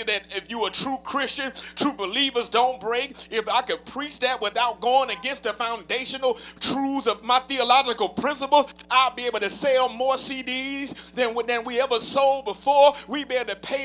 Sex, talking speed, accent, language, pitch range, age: male, 185 wpm, American, English, 215-280 Hz, 30-49